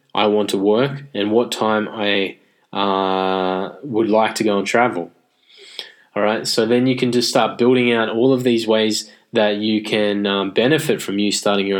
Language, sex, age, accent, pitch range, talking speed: English, male, 20-39, Australian, 100-120 Hz, 195 wpm